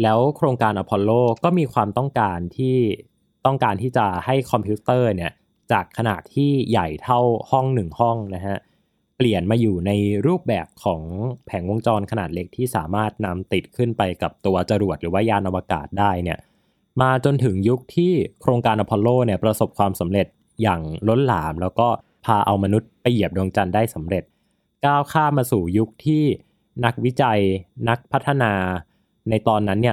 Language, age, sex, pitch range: Thai, 20-39, male, 100-125 Hz